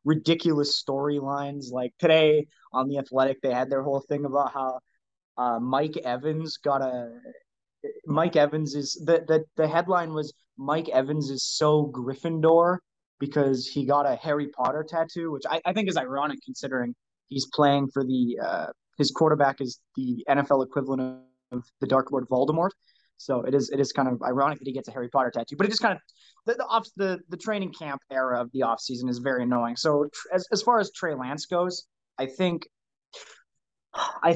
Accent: American